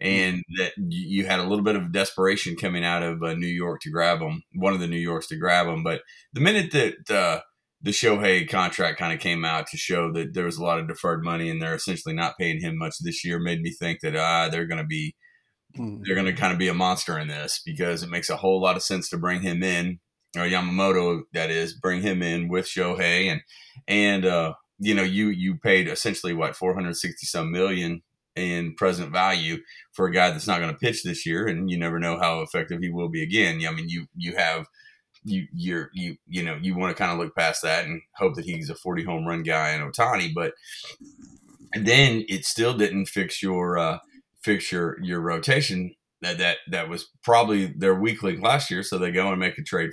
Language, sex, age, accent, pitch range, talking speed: English, male, 30-49, American, 85-100 Hz, 230 wpm